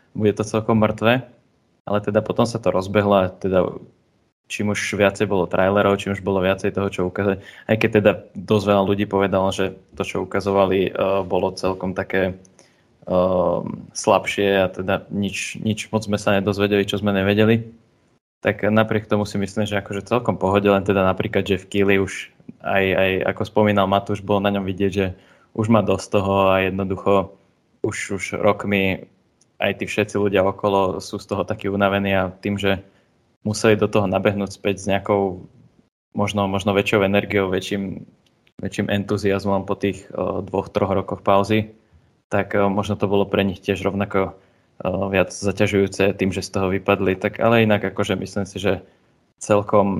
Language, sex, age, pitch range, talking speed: Slovak, male, 20-39, 95-105 Hz, 175 wpm